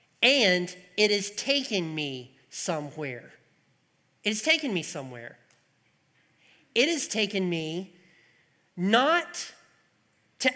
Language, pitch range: English, 155-245 Hz